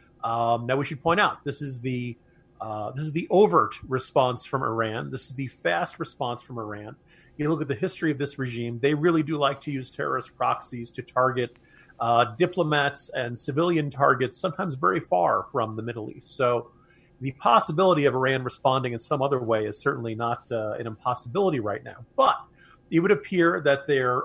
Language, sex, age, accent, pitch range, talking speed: English, male, 40-59, American, 120-155 Hz, 195 wpm